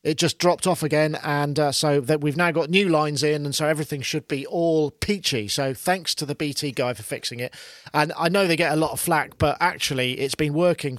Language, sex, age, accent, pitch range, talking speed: English, male, 40-59, British, 135-170 Hz, 245 wpm